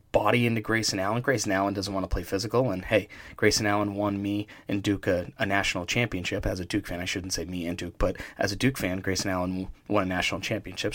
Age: 30-49